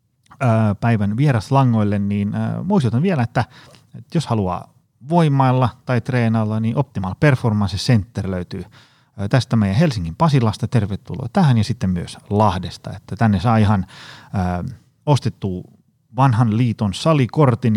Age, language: 30-49, Finnish